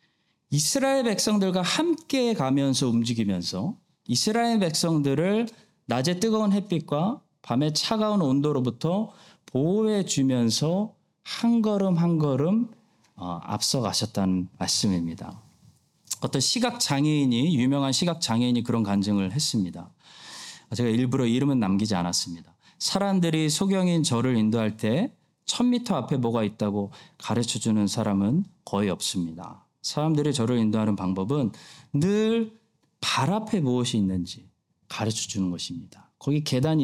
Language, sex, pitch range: Korean, male, 115-190 Hz